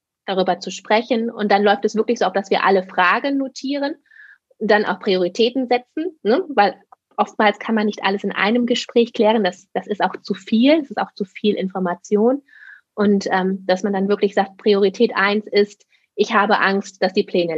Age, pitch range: 20-39, 195-230 Hz